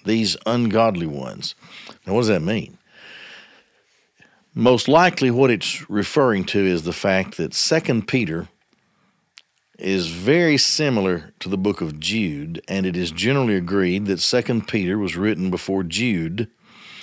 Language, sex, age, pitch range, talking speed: English, male, 50-69, 95-130 Hz, 140 wpm